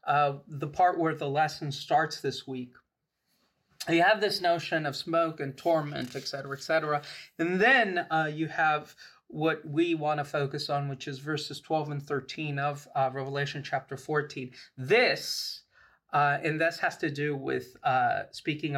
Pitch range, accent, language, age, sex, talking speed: 140-160 Hz, American, English, 30-49, male, 170 wpm